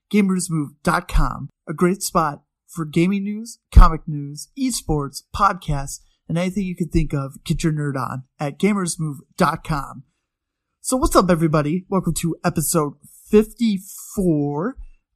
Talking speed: 125 wpm